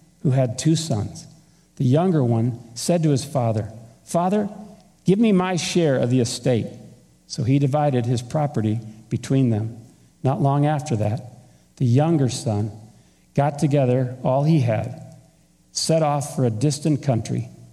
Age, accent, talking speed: 50-69, American, 150 wpm